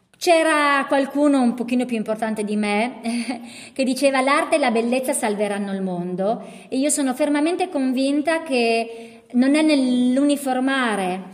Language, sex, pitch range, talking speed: Italian, female, 225-295 Hz, 145 wpm